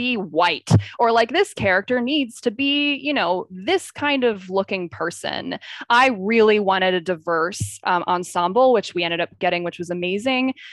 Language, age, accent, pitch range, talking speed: English, 20-39, American, 180-245 Hz, 175 wpm